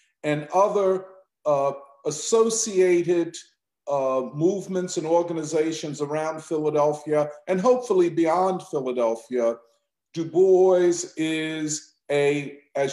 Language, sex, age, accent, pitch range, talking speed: English, male, 50-69, American, 150-190 Hz, 90 wpm